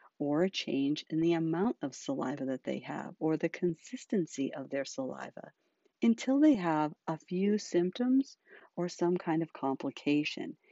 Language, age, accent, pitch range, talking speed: English, 50-69, American, 150-235 Hz, 155 wpm